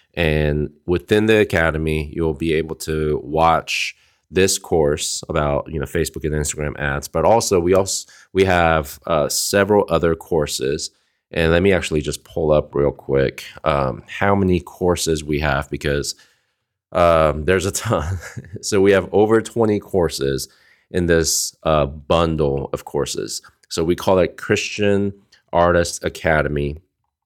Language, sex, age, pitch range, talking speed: English, male, 30-49, 80-95 Hz, 145 wpm